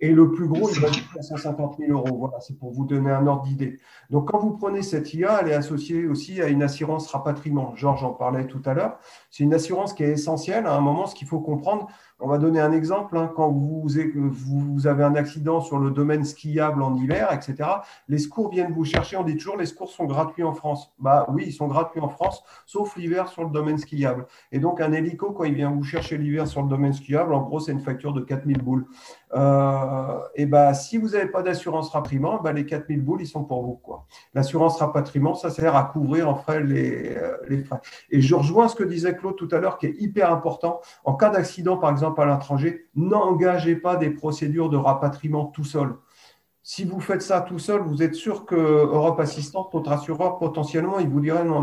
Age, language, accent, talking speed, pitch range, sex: 40-59, French, French, 230 wpm, 140-170 Hz, male